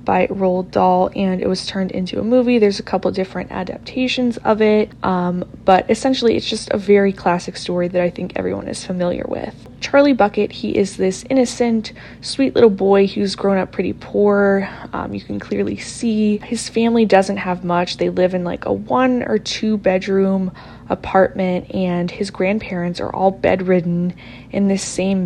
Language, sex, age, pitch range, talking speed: English, female, 20-39, 180-215 Hz, 180 wpm